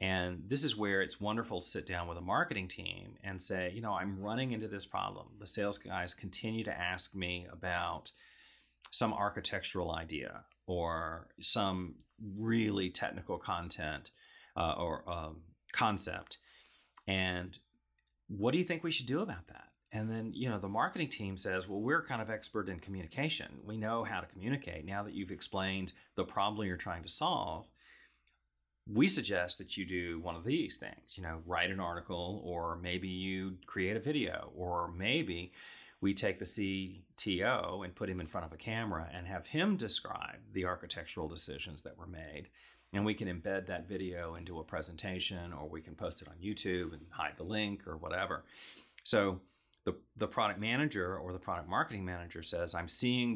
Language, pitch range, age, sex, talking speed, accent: English, 85-105 Hz, 40-59, male, 180 wpm, American